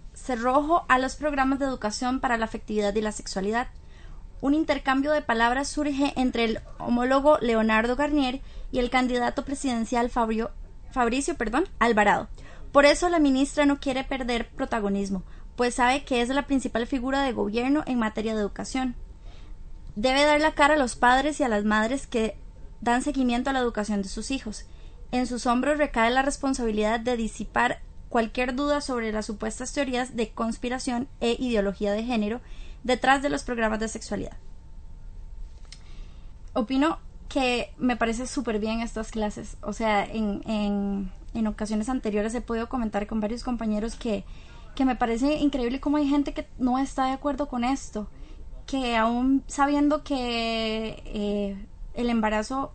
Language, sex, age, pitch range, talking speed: Spanish, female, 20-39, 220-270 Hz, 155 wpm